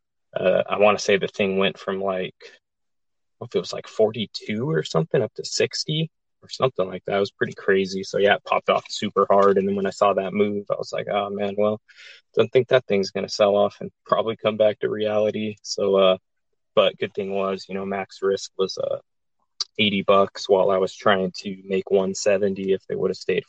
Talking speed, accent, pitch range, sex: 230 wpm, American, 95-105 Hz, male